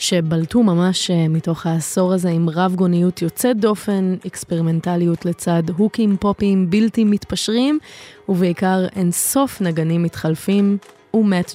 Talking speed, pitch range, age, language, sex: 110 wpm, 170-205 Hz, 20-39, Hebrew, female